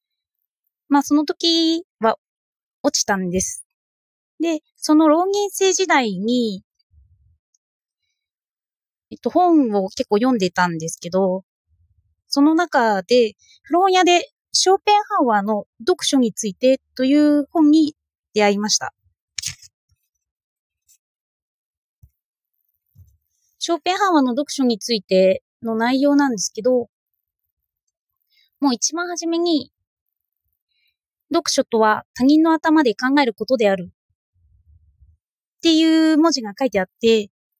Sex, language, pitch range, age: female, Japanese, 190-310 Hz, 20-39